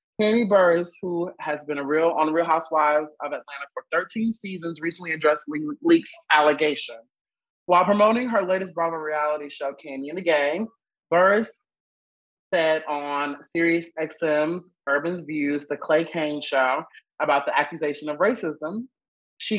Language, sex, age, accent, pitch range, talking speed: English, male, 30-49, American, 150-185 Hz, 145 wpm